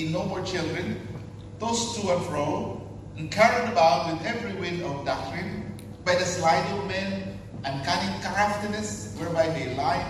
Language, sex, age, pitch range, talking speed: English, male, 50-69, 110-165 Hz, 150 wpm